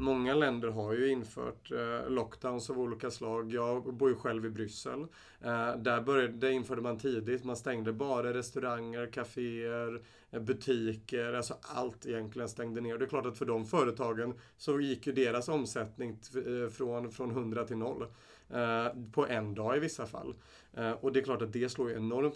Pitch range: 115-135 Hz